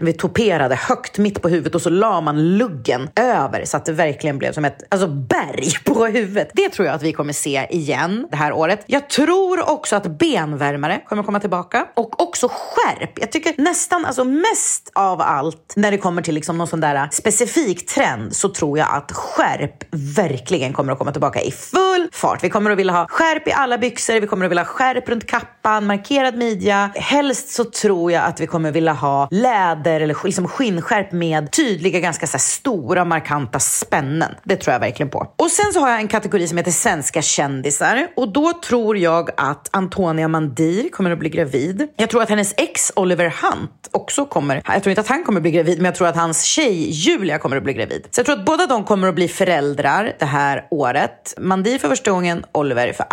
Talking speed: 215 wpm